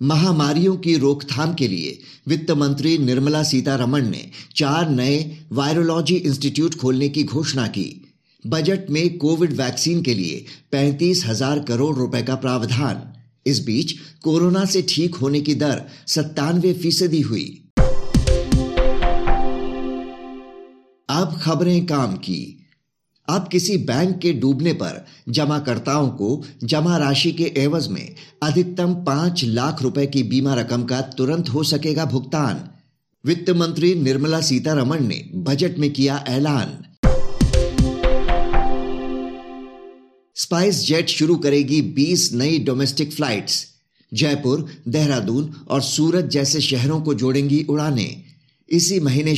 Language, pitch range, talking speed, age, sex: Hindi, 130-160 Hz, 120 wpm, 50-69, male